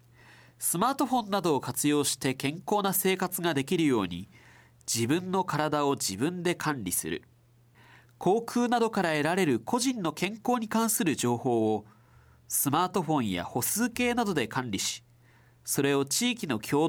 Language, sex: Japanese, male